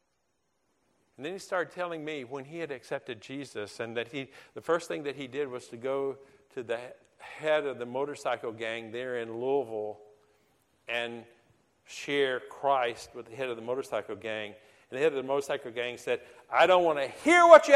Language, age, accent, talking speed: English, 50-69, American, 195 wpm